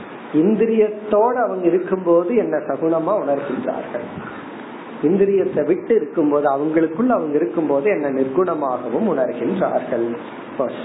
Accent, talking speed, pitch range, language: native, 90 wpm, 150-205 Hz, Tamil